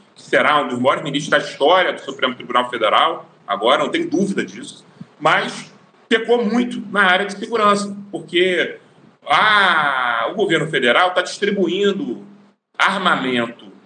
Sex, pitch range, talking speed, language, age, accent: male, 165-225 Hz, 140 wpm, Portuguese, 40-59, Brazilian